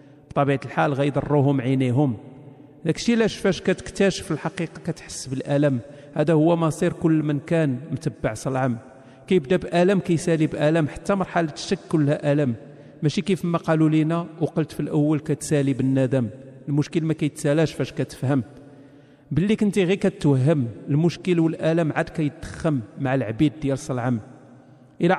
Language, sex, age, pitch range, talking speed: Arabic, male, 40-59, 140-170 Hz, 135 wpm